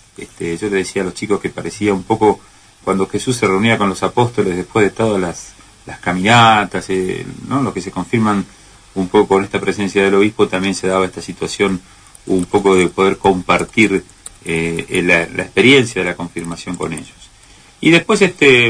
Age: 40-59